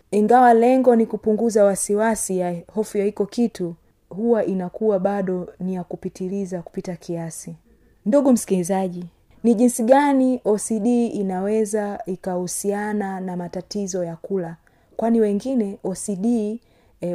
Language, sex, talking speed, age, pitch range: Swahili, female, 120 wpm, 30-49, 190-225 Hz